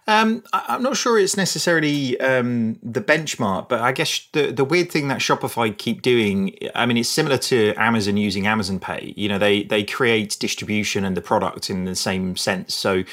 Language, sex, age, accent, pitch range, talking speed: English, male, 30-49, British, 100-115 Hz, 195 wpm